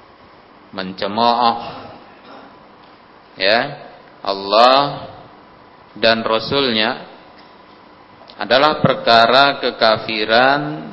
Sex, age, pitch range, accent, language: male, 40-59, 110-135 Hz, native, Indonesian